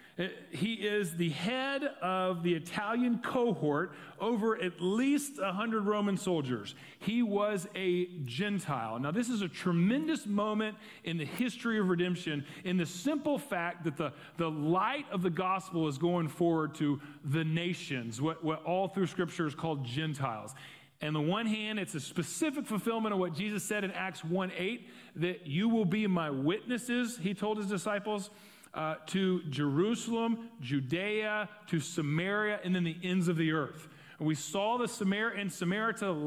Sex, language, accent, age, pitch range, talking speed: male, English, American, 40-59, 160-210 Hz, 165 wpm